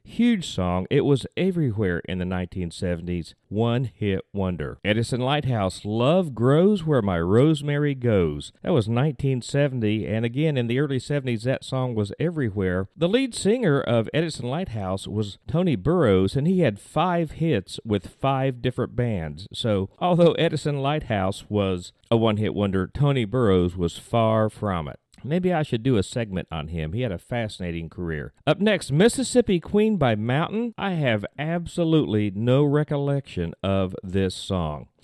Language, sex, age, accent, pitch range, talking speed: English, male, 40-59, American, 100-150 Hz, 155 wpm